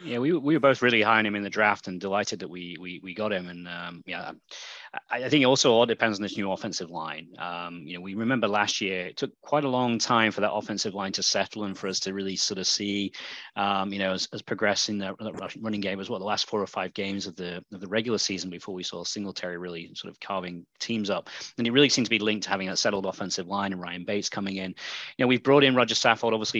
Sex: male